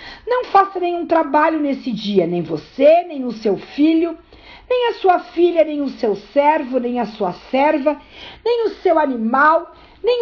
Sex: female